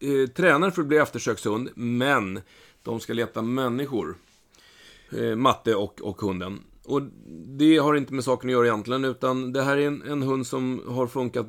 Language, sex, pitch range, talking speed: Swedish, male, 115-150 Hz, 170 wpm